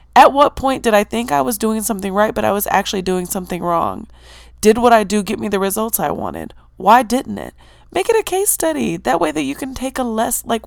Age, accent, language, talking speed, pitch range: 20-39, American, English, 255 wpm, 160-220 Hz